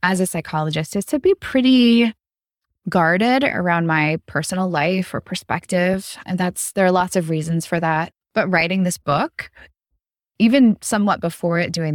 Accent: American